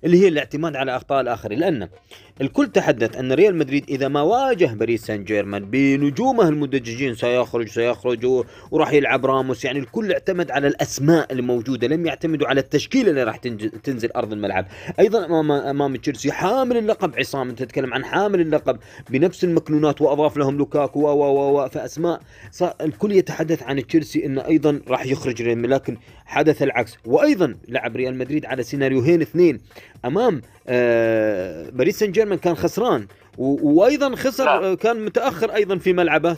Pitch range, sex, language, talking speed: 130-175 Hz, male, Arabic, 150 wpm